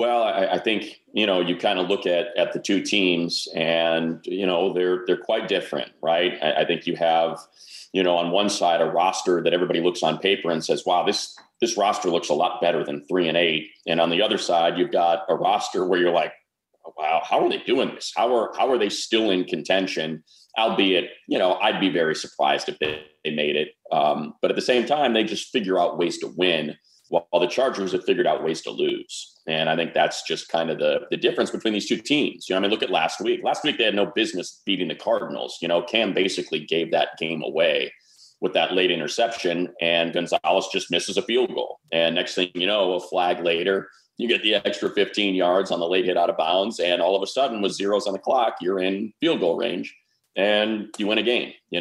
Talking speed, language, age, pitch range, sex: 240 wpm, English, 40-59, 85-110 Hz, male